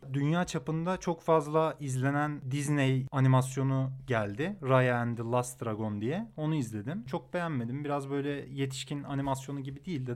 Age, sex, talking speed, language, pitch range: 30-49, male, 150 wpm, Turkish, 125-155 Hz